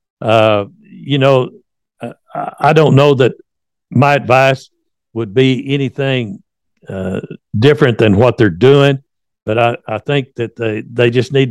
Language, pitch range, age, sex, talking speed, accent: English, 115-140 Hz, 60-79, male, 145 wpm, American